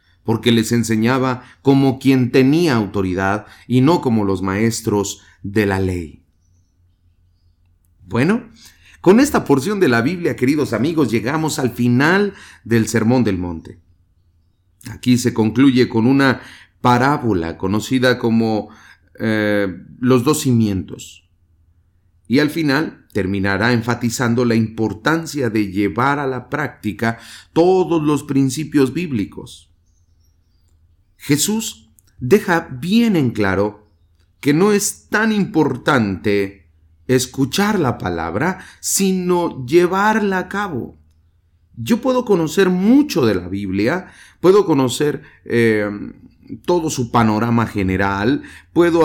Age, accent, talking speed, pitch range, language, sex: 40-59, Mexican, 110 wpm, 95-145 Hz, English, male